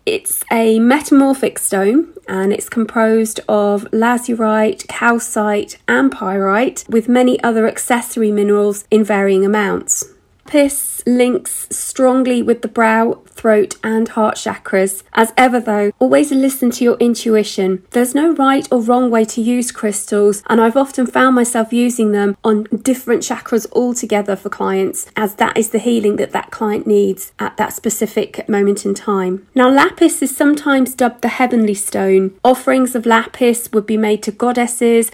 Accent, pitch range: British, 210-250 Hz